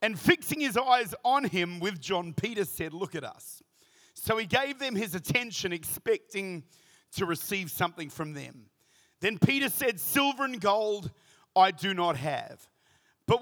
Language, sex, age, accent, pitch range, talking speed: English, male, 40-59, Australian, 175-240 Hz, 160 wpm